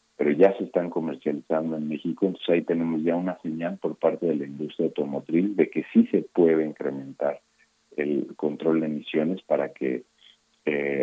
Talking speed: 175 wpm